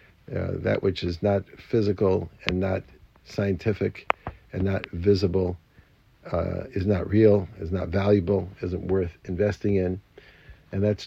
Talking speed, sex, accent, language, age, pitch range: 135 wpm, male, American, English, 50-69, 90-105 Hz